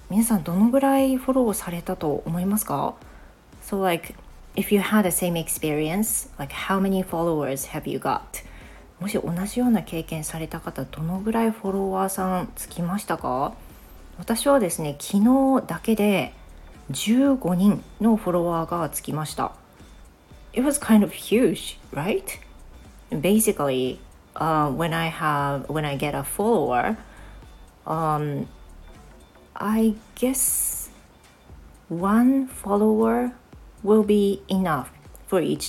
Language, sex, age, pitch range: Japanese, female, 30-49, 155-215 Hz